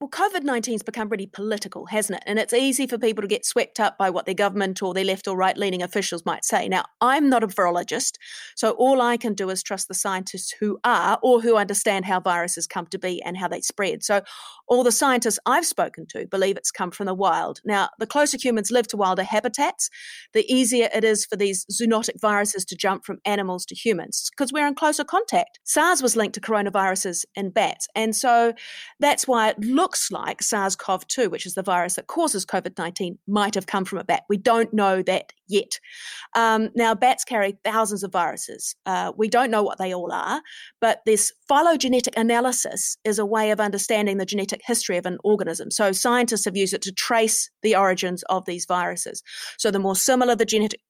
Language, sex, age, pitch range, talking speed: English, female, 30-49, 195-245 Hz, 210 wpm